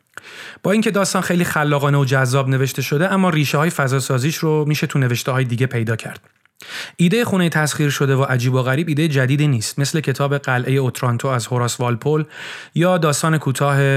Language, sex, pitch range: Persian, male, 125-155 Hz